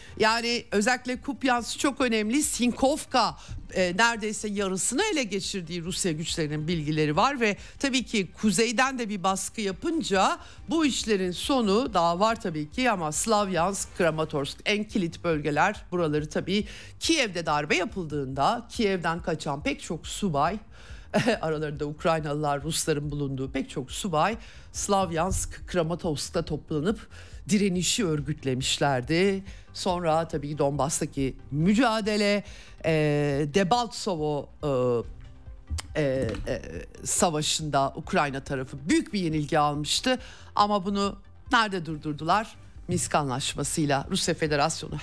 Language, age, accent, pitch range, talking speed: Turkish, 60-79, native, 150-205 Hz, 110 wpm